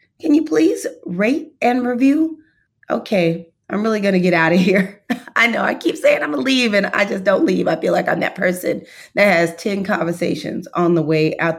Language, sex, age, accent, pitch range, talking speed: English, female, 30-49, American, 170-235 Hz, 225 wpm